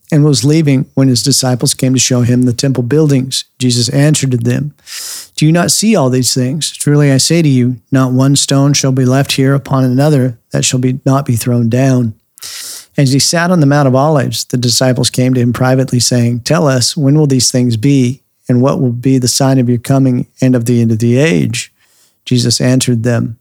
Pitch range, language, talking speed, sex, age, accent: 125-140 Hz, English, 220 wpm, male, 40-59, American